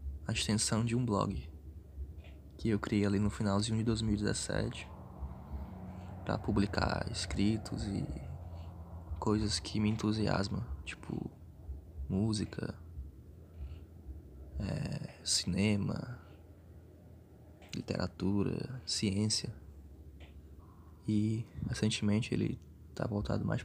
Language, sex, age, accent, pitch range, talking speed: Portuguese, male, 20-39, Brazilian, 75-105 Hz, 85 wpm